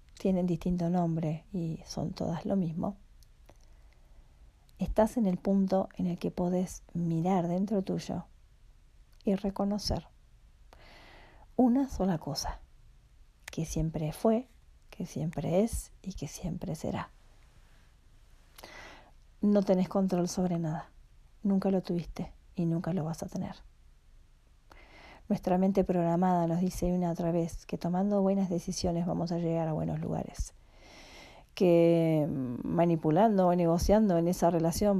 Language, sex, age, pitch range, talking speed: Spanish, female, 40-59, 170-200 Hz, 125 wpm